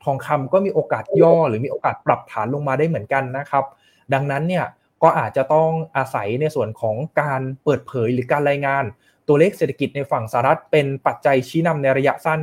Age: 20-39